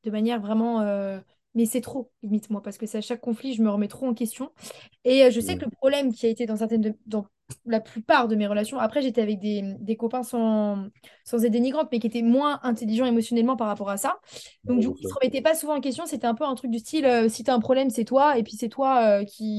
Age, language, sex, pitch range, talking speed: 20-39, French, female, 220-265 Hz, 280 wpm